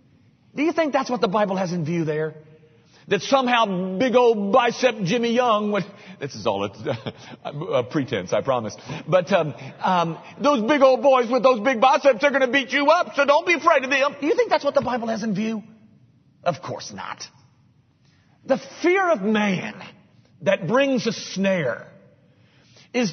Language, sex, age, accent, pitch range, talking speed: English, male, 40-59, American, 160-270 Hz, 190 wpm